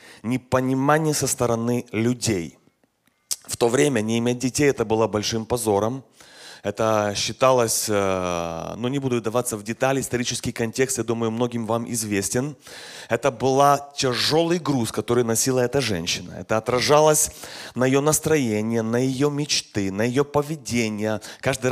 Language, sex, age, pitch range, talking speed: Russian, male, 30-49, 115-145 Hz, 140 wpm